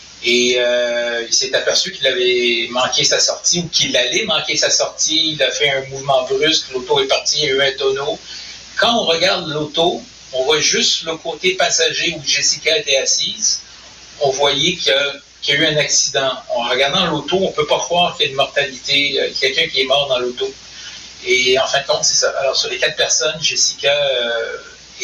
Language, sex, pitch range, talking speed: French, male, 140-190 Hz, 210 wpm